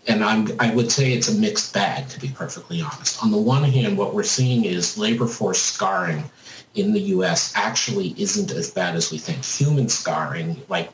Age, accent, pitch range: 50-69, American, 125-205 Hz